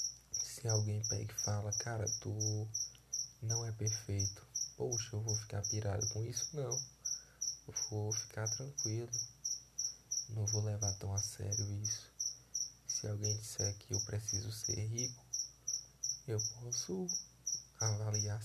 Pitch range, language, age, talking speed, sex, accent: 105-120 Hz, Portuguese, 20-39, 125 wpm, male, Brazilian